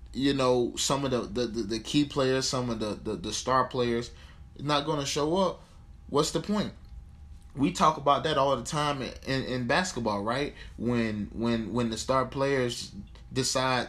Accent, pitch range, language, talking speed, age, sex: American, 115-140 Hz, English, 190 wpm, 20-39, male